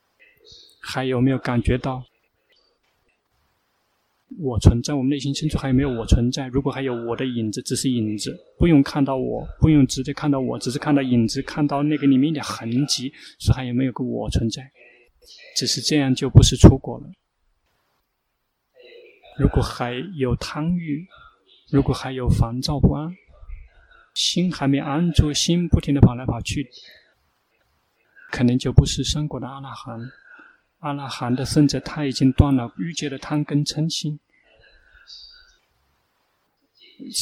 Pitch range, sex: 125-150 Hz, male